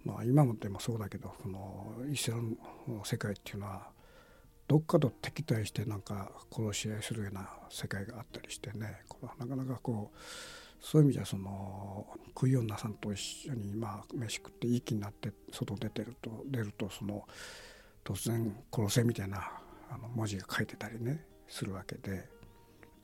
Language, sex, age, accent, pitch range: Japanese, male, 60-79, native, 105-135 Hz